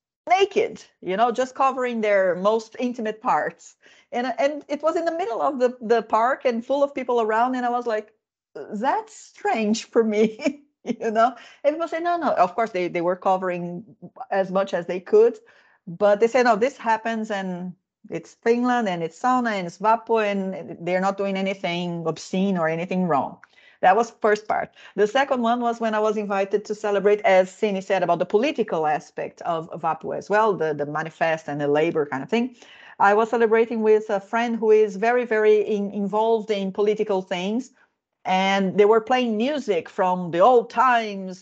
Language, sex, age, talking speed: Finnish, female, 40-59, 195 wpm